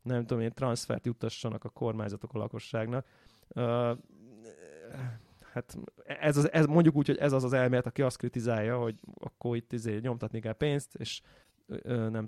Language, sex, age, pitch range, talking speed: Hungarian, male, 20-39, 110-130 Hz, 170 wpm